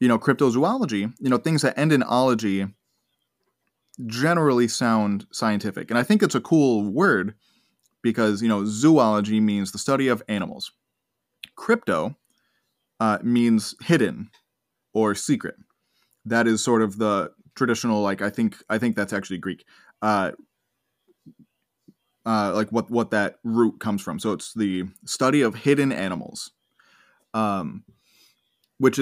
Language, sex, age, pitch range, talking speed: English, male, 20-39, 105-130 Hz, 140 wpm